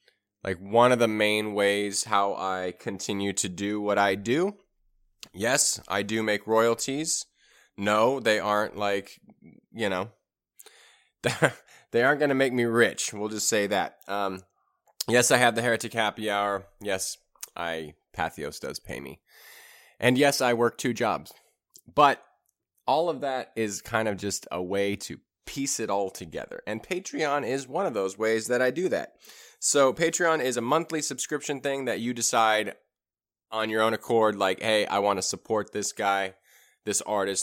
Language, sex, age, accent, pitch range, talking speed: English, male, 20-39, American, 100-125 Hz, 170 wpm